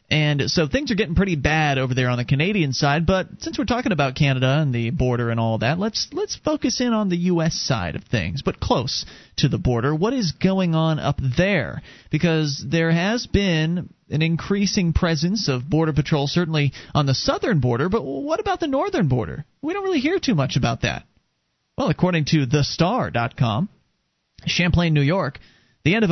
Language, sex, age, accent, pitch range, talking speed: English, male, 30-49, American, 135-175 Hz, 195 wpm